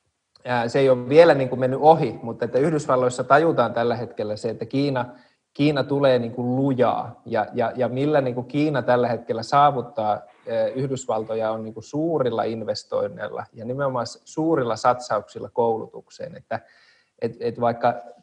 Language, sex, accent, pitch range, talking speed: Finnish, male, native, 115-135 Hz, 115 wpm